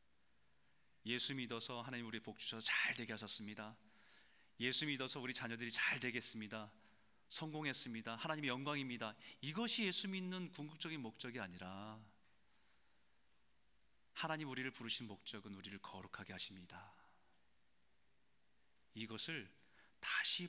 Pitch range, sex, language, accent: 110-155 Hz, male, Korean, native